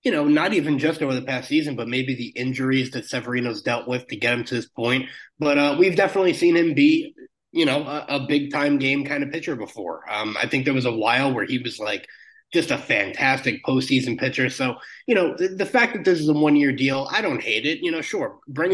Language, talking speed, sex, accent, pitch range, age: English, 250 wpm, male, American, 130-175 Hz, 20-39